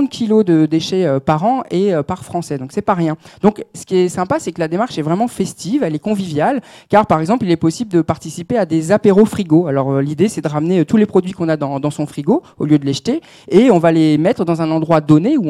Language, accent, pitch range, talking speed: French, French, 145-190 Hz, 270 wpm